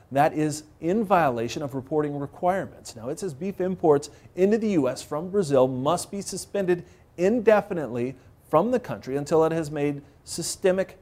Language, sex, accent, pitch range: English, male, American, 130-175 Hz